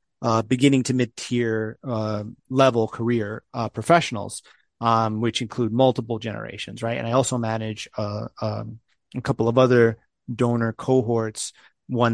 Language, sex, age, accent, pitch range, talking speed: English, male, 30-49, American, 110-130 Hz, 145 wpm